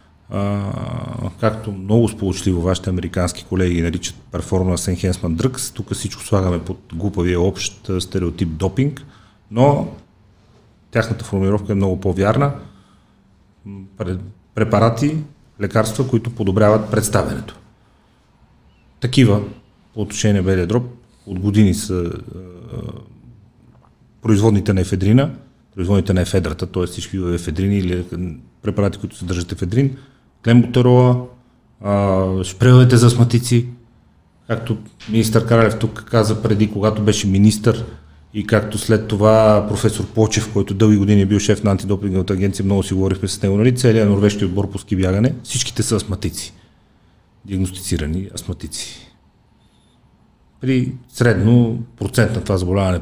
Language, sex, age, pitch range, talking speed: Bulgarian, male, 40-59, 95-115 Hz, 115 wpm